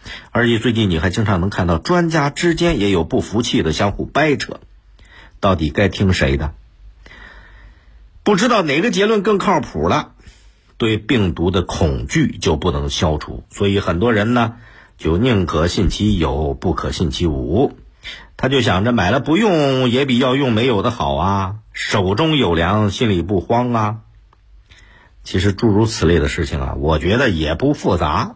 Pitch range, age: 85-130 Hz, 50-69